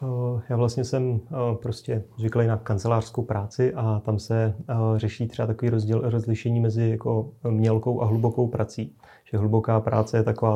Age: 30-49